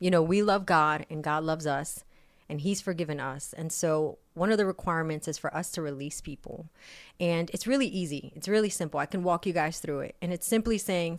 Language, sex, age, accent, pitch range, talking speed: English, female, 30-49, American, 160-195 Hz, 230 wpm